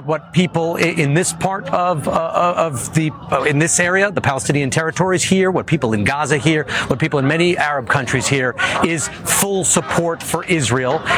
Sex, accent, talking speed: male, American, 175 wpm